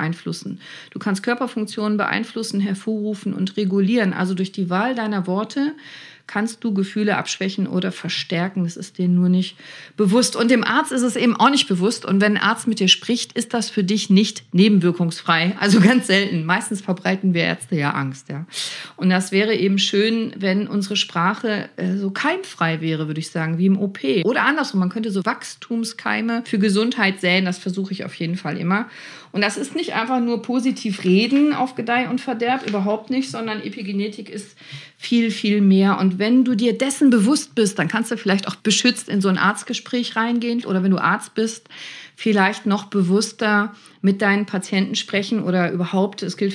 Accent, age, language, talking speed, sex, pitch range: German, 40-59, German, 190 wpm, female, 185-230 Hz